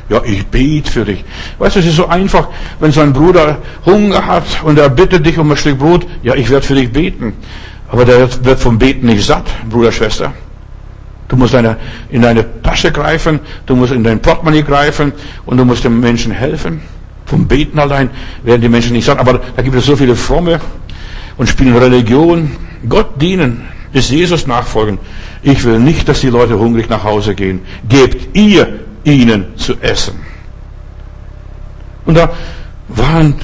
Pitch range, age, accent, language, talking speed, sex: 120-165 Hz, 60-79, German, German, 180 wpm, male